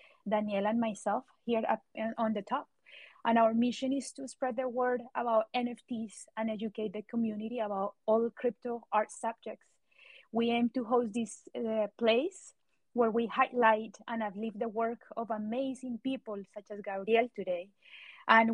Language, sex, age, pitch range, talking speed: English, female, 30-49, 210-245 Hz, 160 wpm